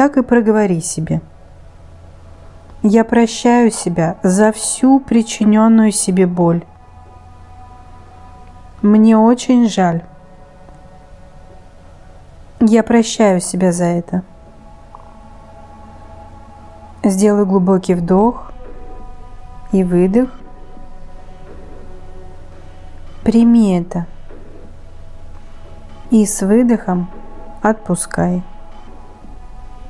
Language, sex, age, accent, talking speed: Russian, female, 30-49, native, 60 wpm